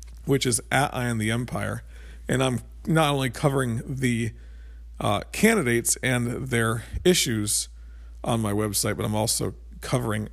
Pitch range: 100-130 Hz